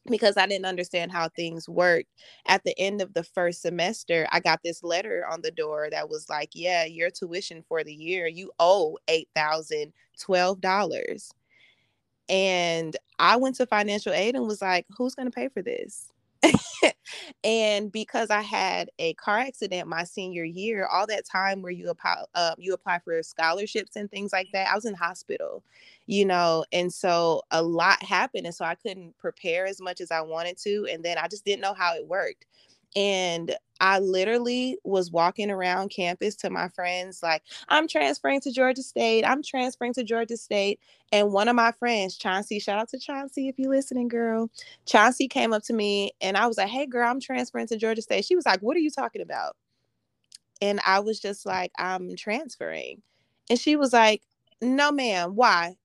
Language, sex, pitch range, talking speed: English, female, 175-240 Hz, 190 wpm